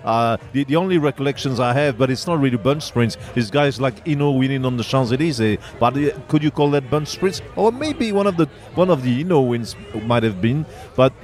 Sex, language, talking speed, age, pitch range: male, English, 240 wpm, 40-59, 125-150 Hz